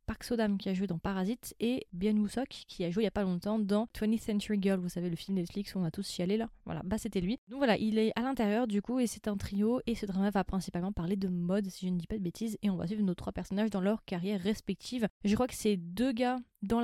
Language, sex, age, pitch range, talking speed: French, female, 20-39, 195-225 Hz, 290 wpm